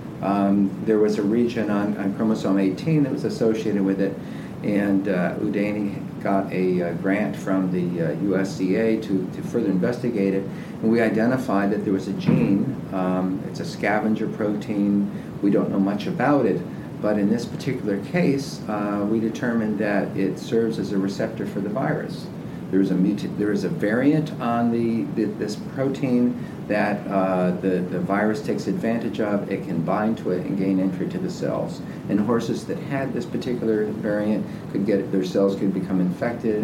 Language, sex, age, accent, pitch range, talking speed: English, male, 50-69, American, 95-110 Hz, 180 wpm